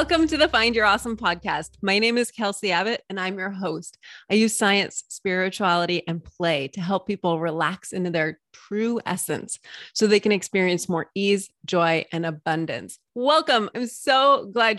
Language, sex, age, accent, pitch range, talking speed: English, female, 30-49, American, 170-215 Hz, 175 wpm